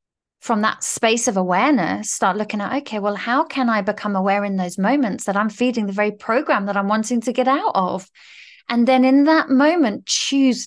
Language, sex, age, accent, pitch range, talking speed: English, female, 30-49, British, 200-250 Hz, 210 wpm